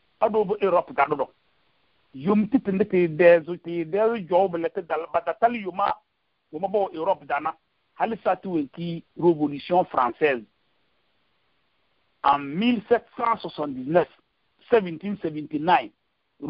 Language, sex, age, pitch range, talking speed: English, male, 50-69, 150-190 Hz, 110 wpm